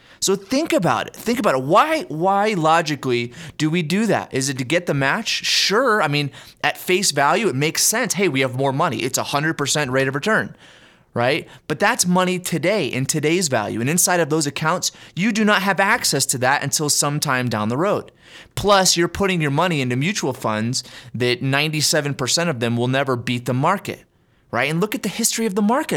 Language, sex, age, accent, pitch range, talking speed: English, male, 30-49, American, 130-180 Hz, 210 wpm